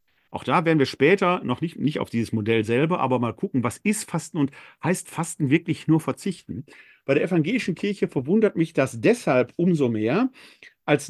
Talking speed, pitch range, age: 190 wpm, 125-180 Hz, 50-69